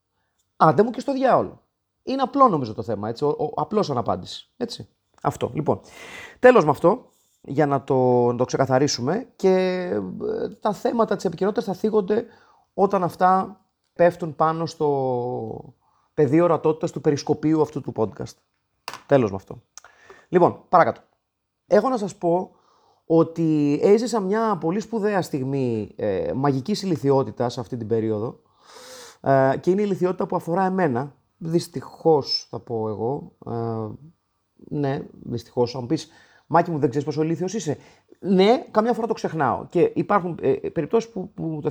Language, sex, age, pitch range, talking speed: Greek, male, 30-49, 125-190 Hz, 145 wpm